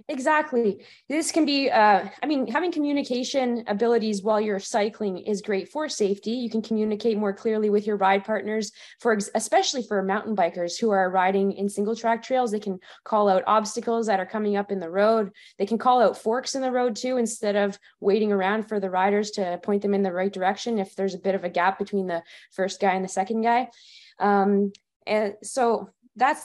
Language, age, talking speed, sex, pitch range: English, 20-39, 210 wpm, female, 195-245 Hz